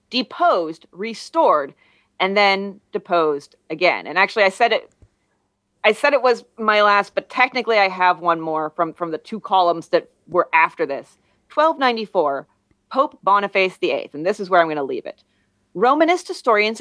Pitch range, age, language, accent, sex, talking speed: 180-245 Hz, 30-49, English, American, female, 165 wpm